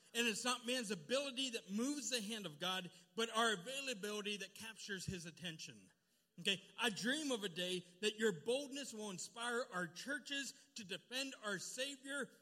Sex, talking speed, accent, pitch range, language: male, 170 wpm, American, 165-215 Hz, English